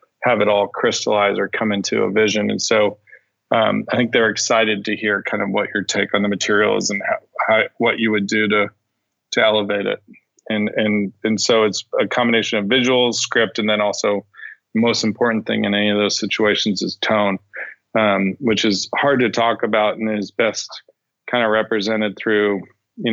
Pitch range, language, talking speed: 105-115 Hz, English, 200 wpm